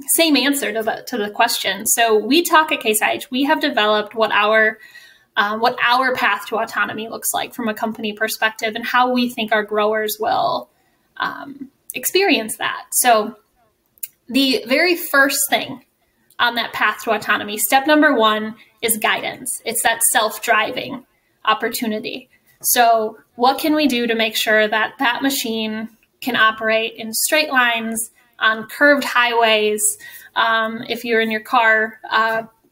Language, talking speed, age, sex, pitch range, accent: English, 150 wpm, 10-29, female, 220-270 Hz, American